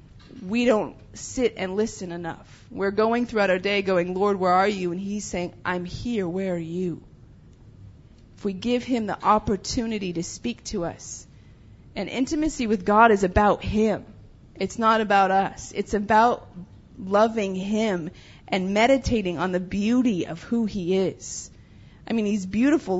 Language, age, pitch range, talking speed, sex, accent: English, 30-49, 175-230 Hz, 160 wpm, female, American